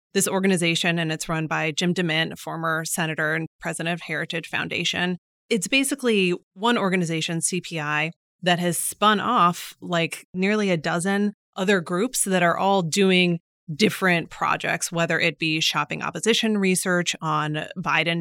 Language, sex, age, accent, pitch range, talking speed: English, female, 30-49, American, 165-195 Hz, 150 wpm